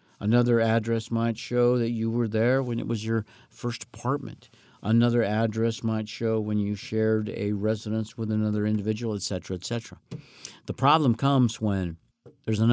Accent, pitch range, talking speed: American, 95-120 Hz, 170 wpm